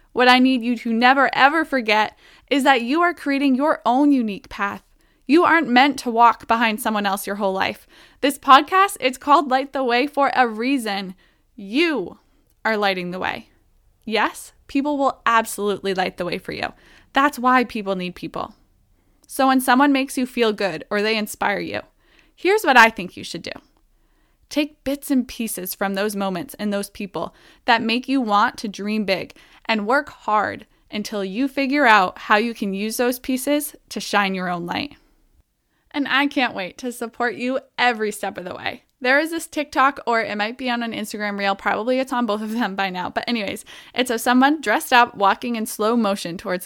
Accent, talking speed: American, 200 wpm